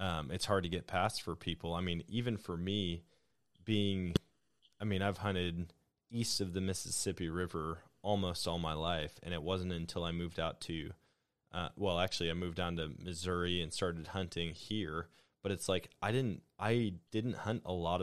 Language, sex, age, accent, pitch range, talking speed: English, male, 20-39, American, 85-95 Hz, 190 wpm